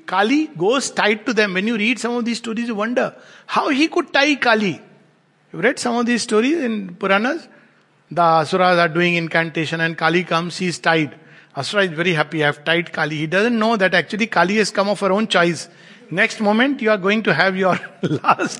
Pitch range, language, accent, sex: 160-225 Hz, English, Indian, male